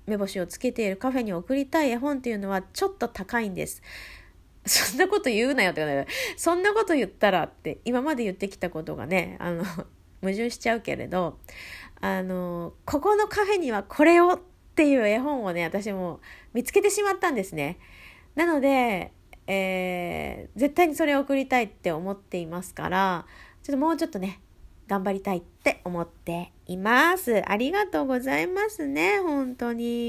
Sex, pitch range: female, 190-315 Hz